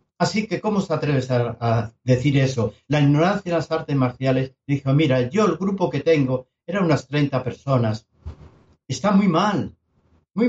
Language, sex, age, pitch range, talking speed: Spanish, male, 60-79, 130-175 Hz, 170 wpm